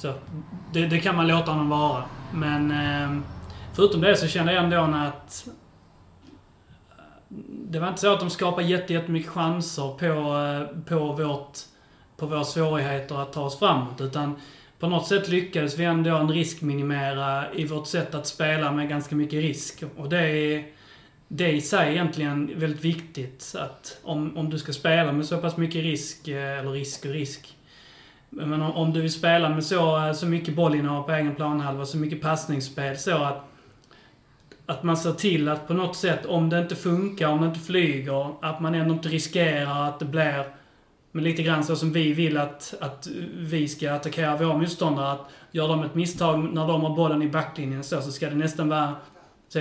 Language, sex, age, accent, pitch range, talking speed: Swedish, male, 30-49, native, 145-170 Hz, 185 wpm